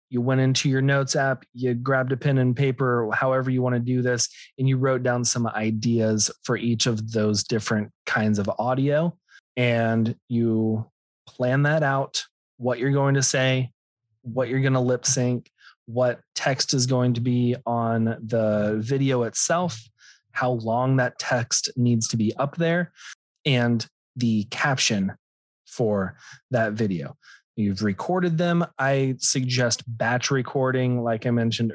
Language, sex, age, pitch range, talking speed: English, male, 20-39, 115-135 Hz, 155 wpm